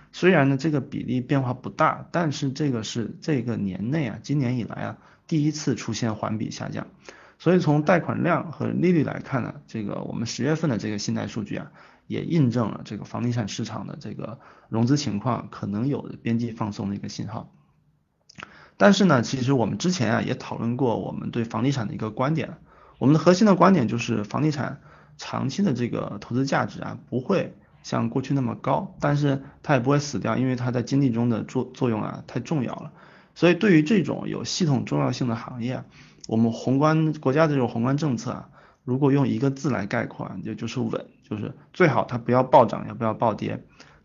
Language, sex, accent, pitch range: Chinese, male, native, 115-150 Hz